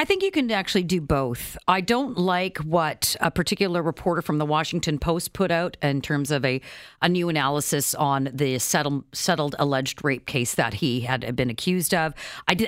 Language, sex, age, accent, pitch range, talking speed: English, female, 40-59, American, 145-195 Hz, 190 wpm